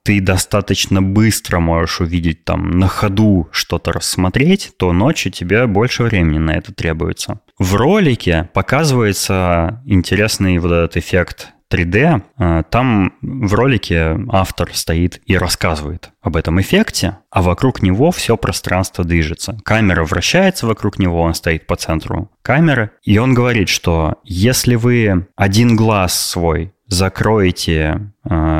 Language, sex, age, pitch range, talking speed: Russian, male, 20-39, 85-110 Hz, 130 wpm